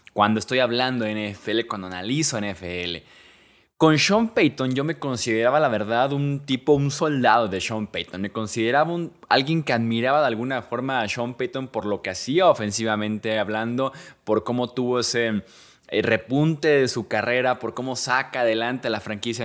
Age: 20-39